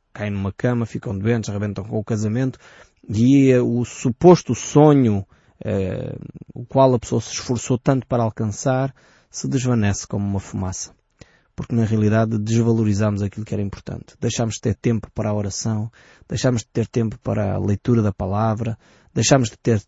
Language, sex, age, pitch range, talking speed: Portuguese, male, 20-39, 105-120 Hz, 165 wpm